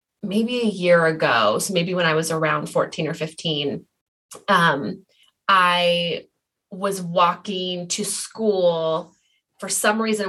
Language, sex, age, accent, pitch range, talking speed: English, female, 20-39, American, 165-215 Hz, 130 wpm